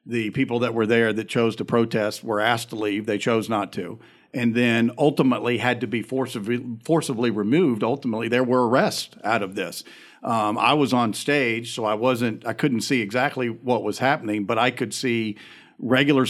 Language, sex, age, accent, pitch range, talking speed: English, male, 50-69, American, 115-140 Hz, 195 wpm